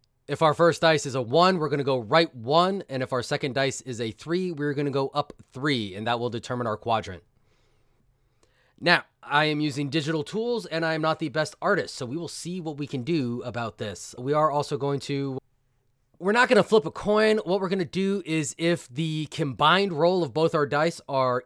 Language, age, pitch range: English, 20-39, 125-160 Hz